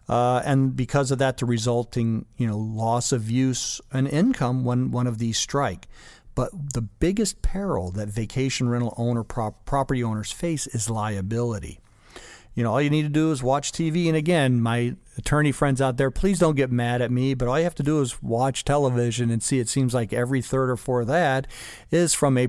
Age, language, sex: 50-69, English, male